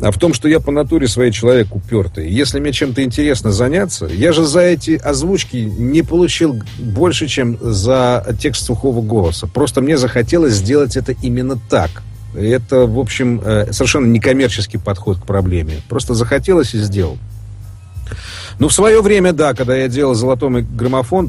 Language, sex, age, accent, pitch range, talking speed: Russian, male, 40-59, native, 105-135 Hz, 160 wpm